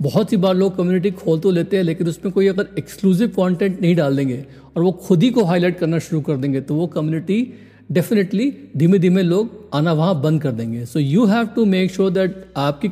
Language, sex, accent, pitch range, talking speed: Hindi, male, native, 150-195 Hz, 225 wpm